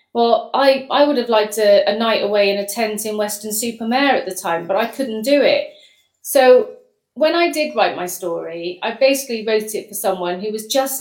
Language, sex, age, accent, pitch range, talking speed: English, female, 40-59, British, 195-235 Hz, 220 wpm